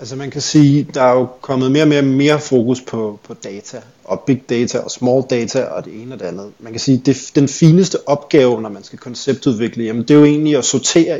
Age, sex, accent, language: 30-49, male, native, Danish